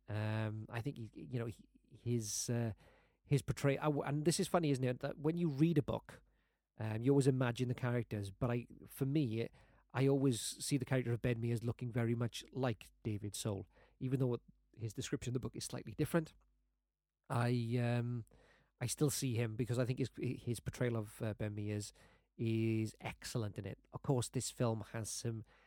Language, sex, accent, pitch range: English, male, British, 105-125 Hz